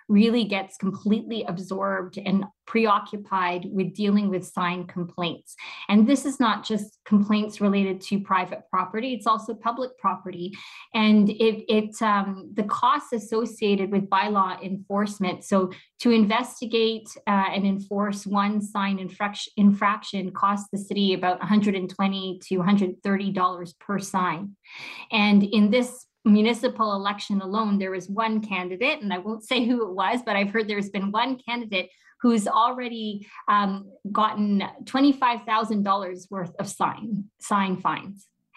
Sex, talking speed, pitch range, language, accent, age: female, 145 wpm, 195-230 Hz, English, American, 20-39